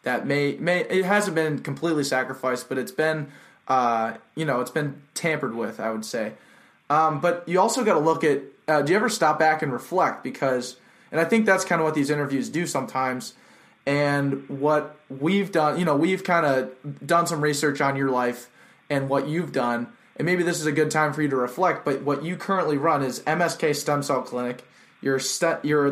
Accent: American